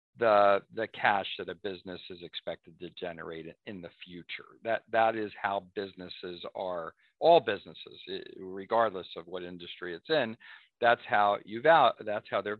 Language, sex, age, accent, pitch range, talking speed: English, male, 50-69, American, 95-120 Hz, 160 wpm